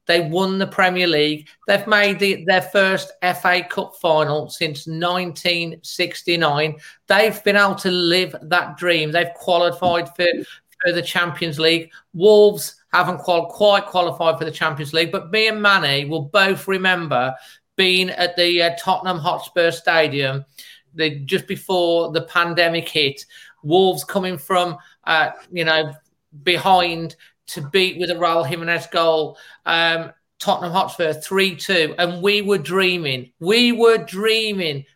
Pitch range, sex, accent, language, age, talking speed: 165-195 Hz, male, British, English, 40-59, 135 wpm